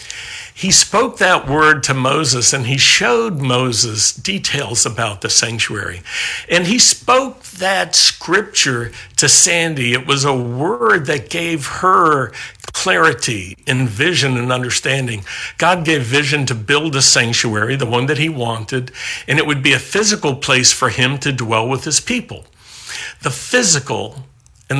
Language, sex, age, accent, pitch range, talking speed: English, male, 60-79, American, 120-155 Hz, 150 wpm